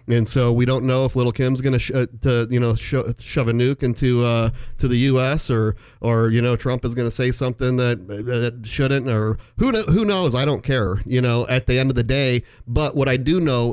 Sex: male